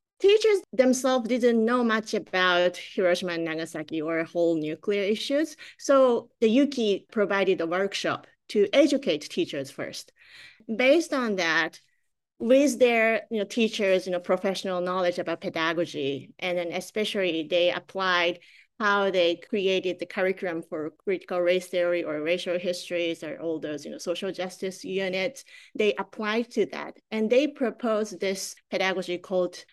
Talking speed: 135 wpm